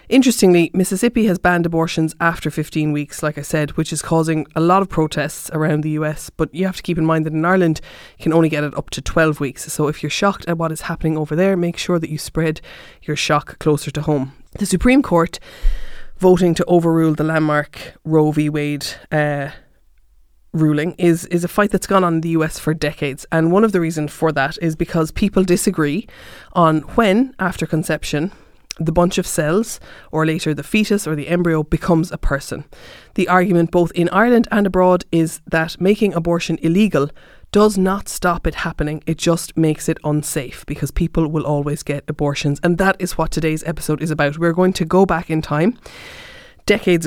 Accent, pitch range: Irish, 155-180 Hz